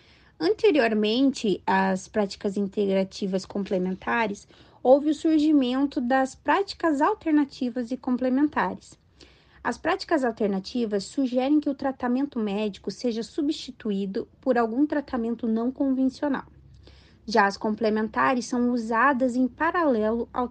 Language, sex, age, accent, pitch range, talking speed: Portuguese, female, 20-39, Brazilian, 220-290 Hz, 105 wpm